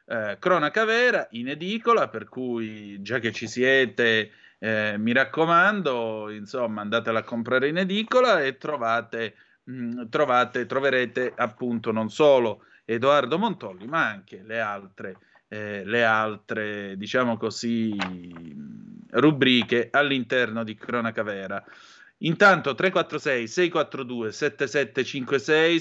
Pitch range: 115-155 Hz